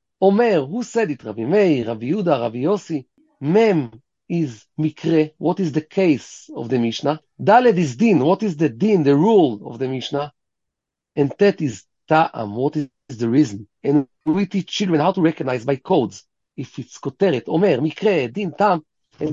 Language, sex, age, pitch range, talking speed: English, male, 40-59, 145-200 Hz, 175 wpm